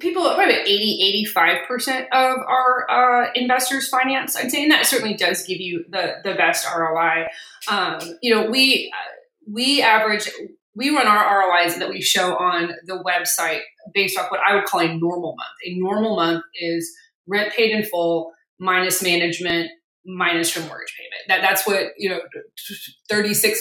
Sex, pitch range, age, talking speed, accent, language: female, 170-220 Hz, 20-39, 170 wpm, American, English